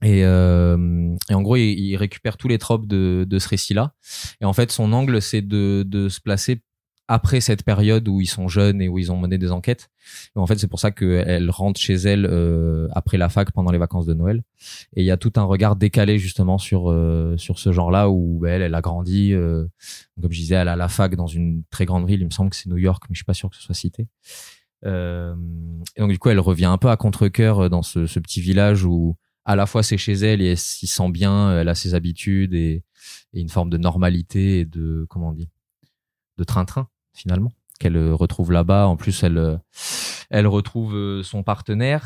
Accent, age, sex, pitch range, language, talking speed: French, 20-39, male, 90-105 Hz, French, 230 wpm